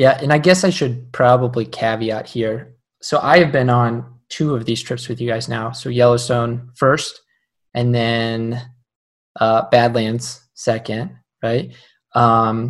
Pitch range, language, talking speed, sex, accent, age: 120-150 Hz, English, 150 wpm, male, American, 20-39